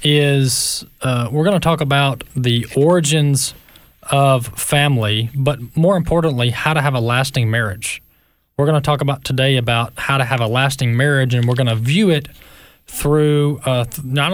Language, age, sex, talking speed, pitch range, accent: English, 20-39, male, 180 wpm, 115-145 Hz, American